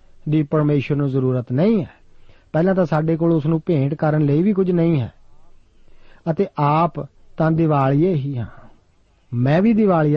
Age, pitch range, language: 40-59, 135-170 Hz, Punjabi